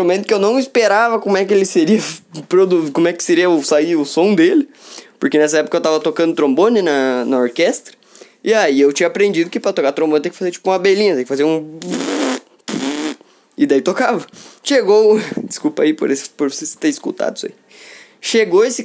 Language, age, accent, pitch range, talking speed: Portuguese, 10-29, Brazilian, 175-255 Hz, 205 wpm